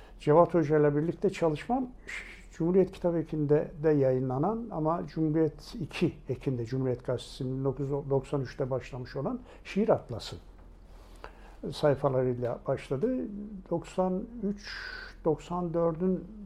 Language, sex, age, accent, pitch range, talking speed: Turkish, male, 60-79, native, 130-175 Hz, 90 wpm